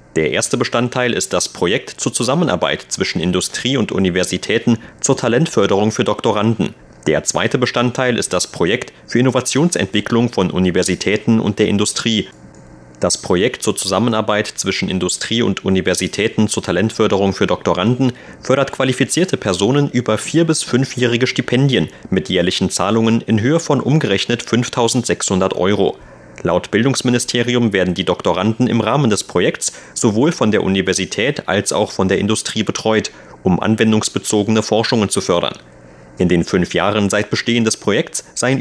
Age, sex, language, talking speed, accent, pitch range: 30-49, male, German, 140 wpm, German, 95-125 Hz